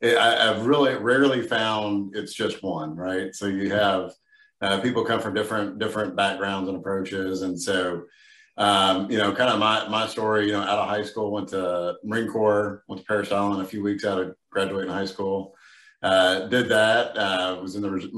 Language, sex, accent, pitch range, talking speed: English, male, American, 95-105 Hz, 200 wpm